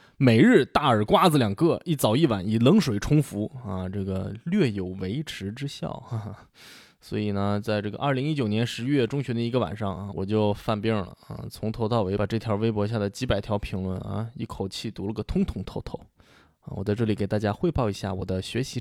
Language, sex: Chinese, male